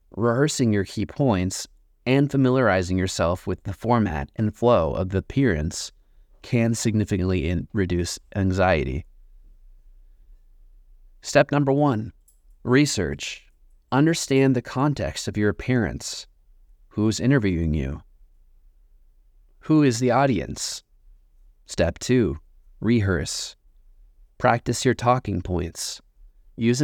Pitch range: 85-125 Hz